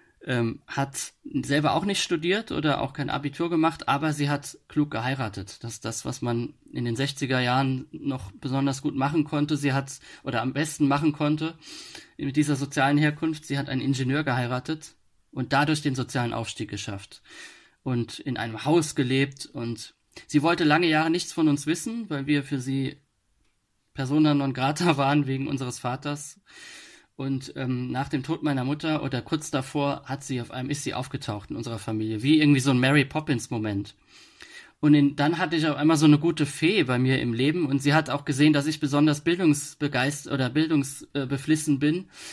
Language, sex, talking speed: German, male, 185 wpm